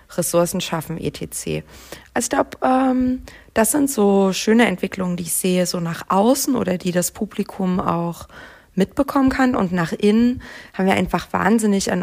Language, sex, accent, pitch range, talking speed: German, female, German, 175-205 Hz, 160 wpm